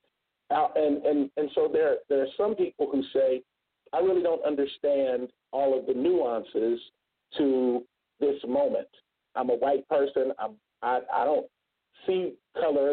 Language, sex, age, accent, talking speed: English, male, 50-69, American, 155 wpm